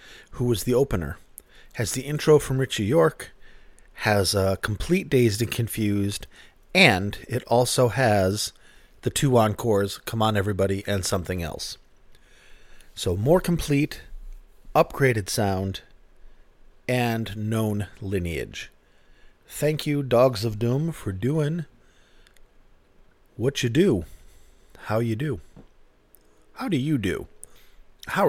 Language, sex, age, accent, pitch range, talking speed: English, male, 40-59, American, 100-125 Hz, 115 wpm